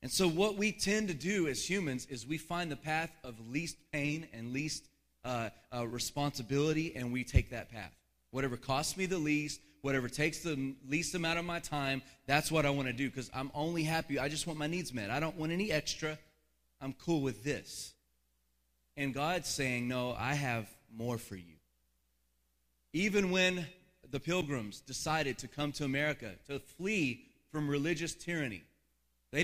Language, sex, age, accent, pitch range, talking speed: English, male, 30-49, American, 110-155 Hz, 180 wpm